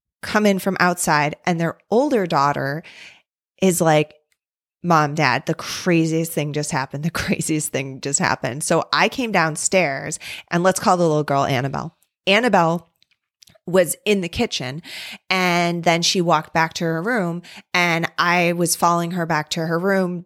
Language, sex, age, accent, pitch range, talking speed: English, female, 20-39, American, 160-200 Hz, 165 wpm